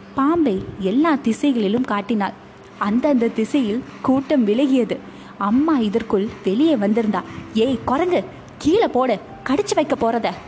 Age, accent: 20-39, native